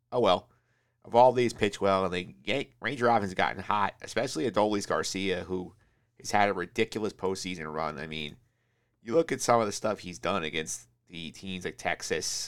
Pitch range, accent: 95-120 Hz, American